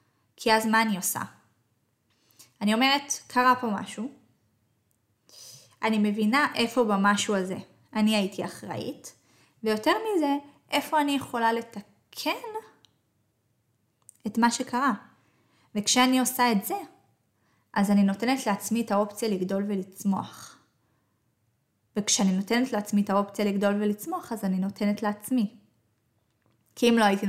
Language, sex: Hebrew, female